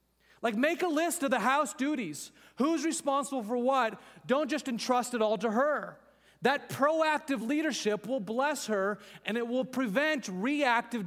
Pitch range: 200-250 Hz